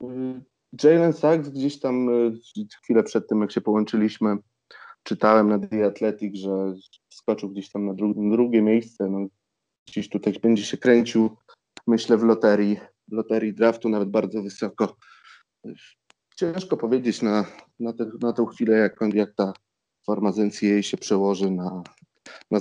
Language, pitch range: Polish, 105-120 Hz